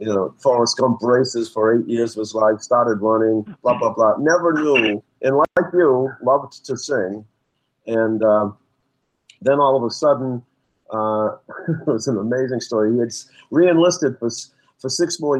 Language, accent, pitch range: English, American, 110-135 Hz